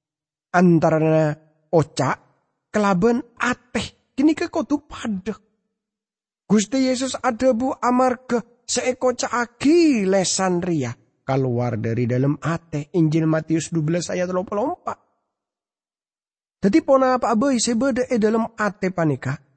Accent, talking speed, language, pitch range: Indonesian, 105 wpm, English, 130-215 Hz